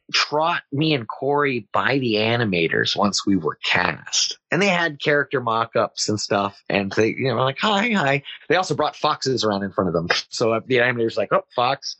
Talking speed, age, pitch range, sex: 210 wpm, 30-49, 110-145 Hz, male